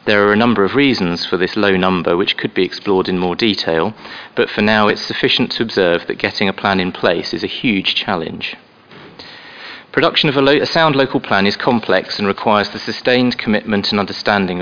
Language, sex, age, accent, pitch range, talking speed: English, male, 40-59, British, 95-120 Hz, 205 wpm